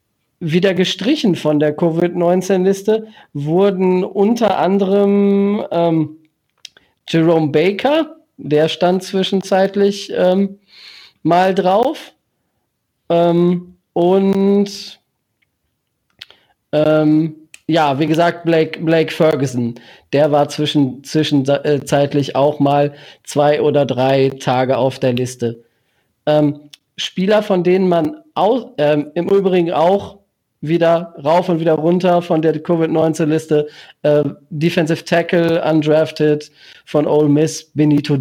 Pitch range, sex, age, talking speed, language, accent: 145-180 Hz, male, 40-59, 100 wpm, German, German